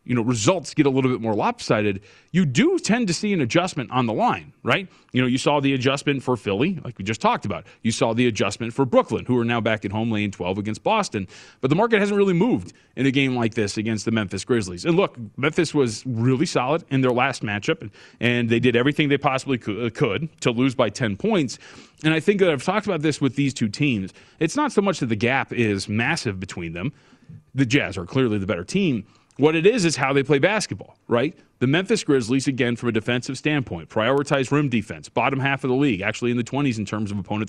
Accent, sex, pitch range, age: American, male, 115-155 Hz, 30-49